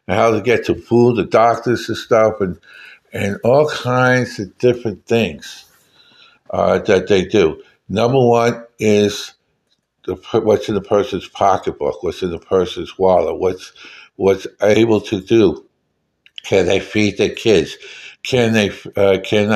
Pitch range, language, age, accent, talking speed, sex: 105-170 Hz, English, 60-79, American, 145 wpm, male